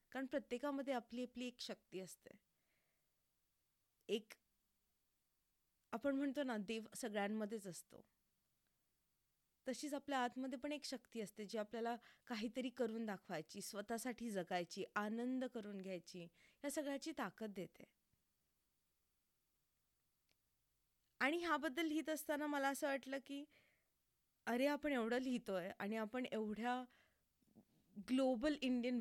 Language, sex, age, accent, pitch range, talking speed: Marathi, female, 20-39, native, 215-280 Hz, 60 wpm